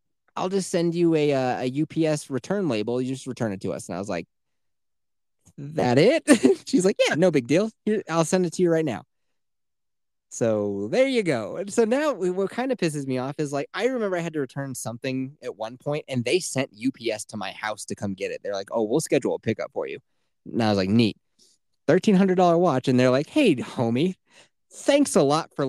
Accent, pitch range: American, 125-195 Hz